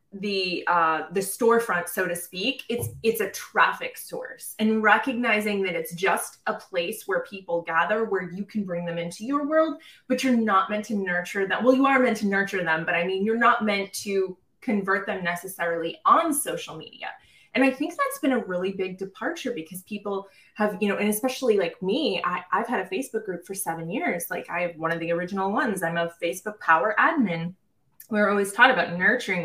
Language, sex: English, female